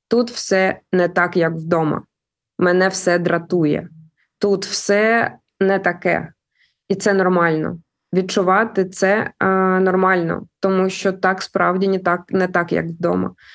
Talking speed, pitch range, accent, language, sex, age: 135 wpm, 175-205 Hz, native, Ukrainian, female, 20-39